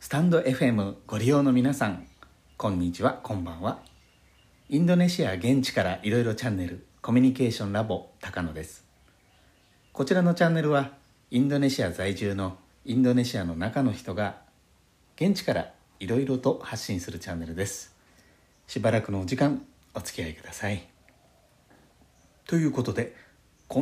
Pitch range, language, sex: 90-130 Hz, Japanese, male